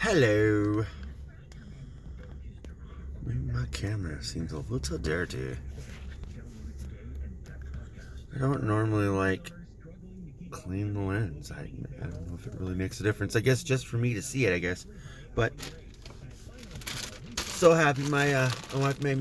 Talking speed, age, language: 130 wpm, 30-49, English